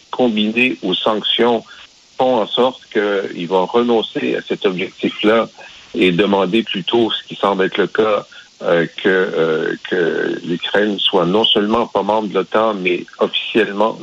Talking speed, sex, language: 150 wpm, male, French